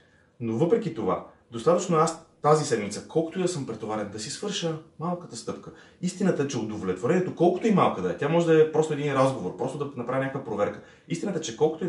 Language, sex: Bulgarian, male